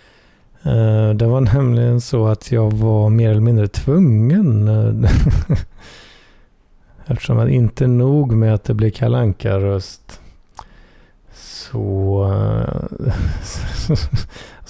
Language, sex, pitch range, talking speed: Swedish, male, 105-125 Hz, 90 wpm